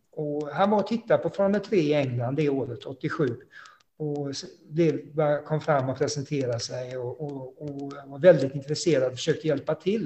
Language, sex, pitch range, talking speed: Swedish, male, 140-185 Hz, 175 wpm